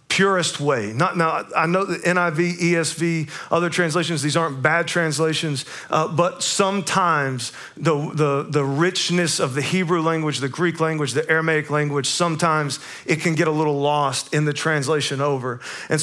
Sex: male